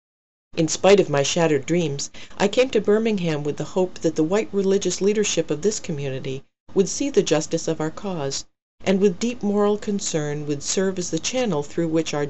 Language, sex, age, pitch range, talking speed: English, female, 40-59, 145-185 Hz, 200 wpm